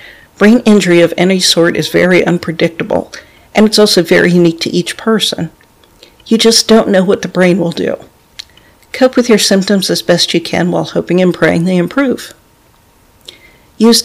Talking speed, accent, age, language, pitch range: 170 wpm, American, 50-69, English, 170-200 Hz